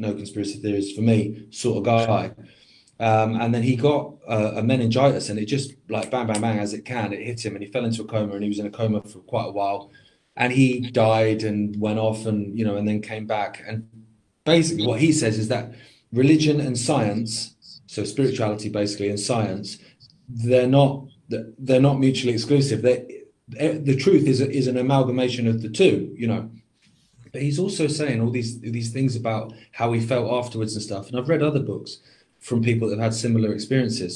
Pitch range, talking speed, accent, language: 110-135 Hz, 205 wpm, British, English